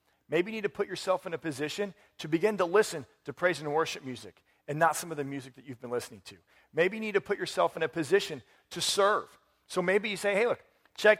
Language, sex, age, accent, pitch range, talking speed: English, male, 40-59, American, 130-185 Hz, 250 wpm